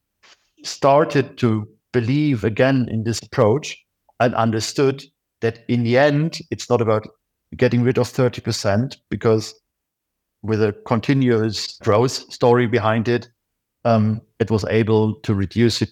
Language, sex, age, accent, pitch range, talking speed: English, male, 50-69, German, 105-125 Hz, 130 wpm